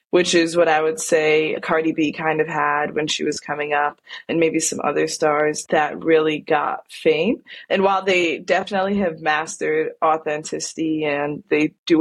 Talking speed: 175 wpm